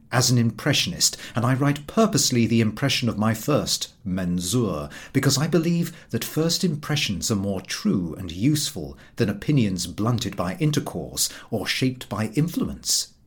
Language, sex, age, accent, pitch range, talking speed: English, male, 40-59, British, 115-180 Hz, 150 wpm